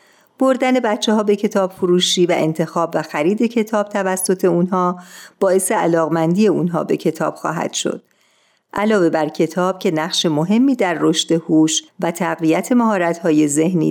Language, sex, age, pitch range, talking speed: Persian, female, 50-69, 165-215 Hz, 140 wpm